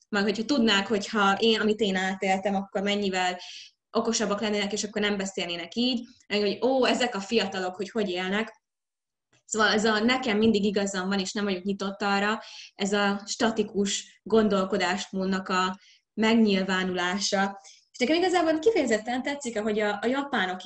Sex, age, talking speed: female, 20-39, 150 wpm